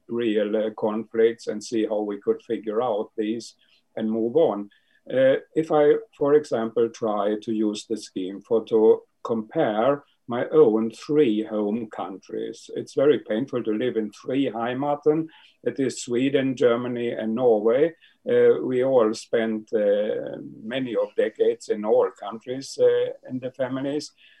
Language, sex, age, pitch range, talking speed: Swedish, male, 50-69, 115-175 Hz, 150 wpm